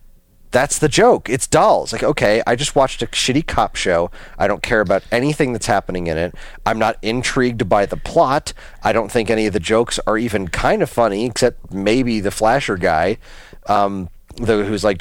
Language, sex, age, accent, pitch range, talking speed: English, male, 30-49, American, 105-160 Hz, 195 wpm